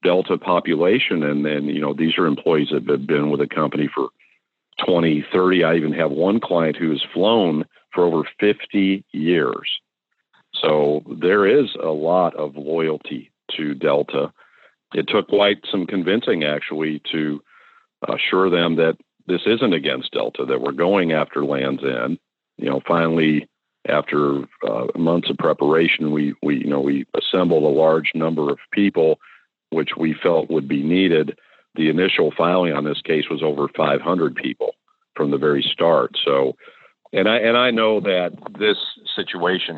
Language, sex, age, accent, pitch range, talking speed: English, male, 50-69, American, 75-100 Hz, 160 wpm